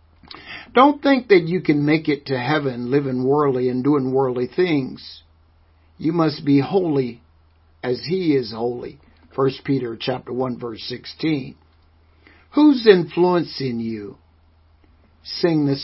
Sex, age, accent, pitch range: male, 60-79, American, 120-190 Hz